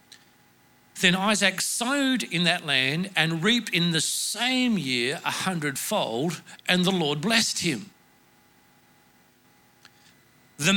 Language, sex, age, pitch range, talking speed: English, male, 50-69, 175-220 Hz, 110 wpm